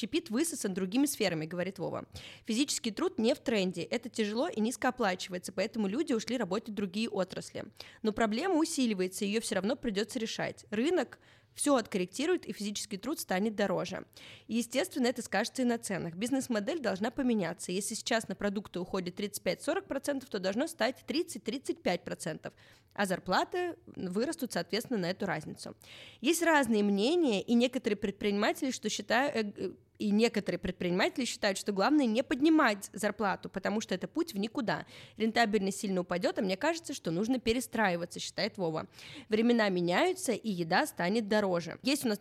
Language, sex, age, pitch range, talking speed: Russian, female, 20-39, 195-260 Hz, 150 wpm